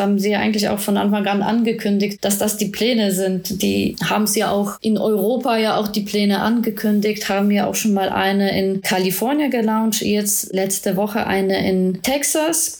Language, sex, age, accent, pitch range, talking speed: German, female, 20-39, German, 190-215 Hz, 190 wpm